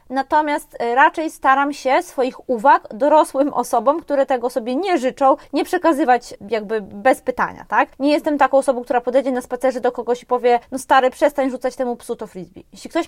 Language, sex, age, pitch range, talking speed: Polish, female, 20-39, 240-290 Hz, 190 wpm